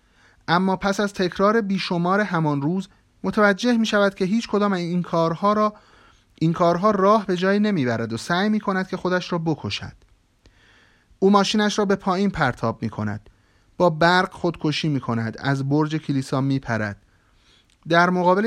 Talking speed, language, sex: 165 wpm, Persian, male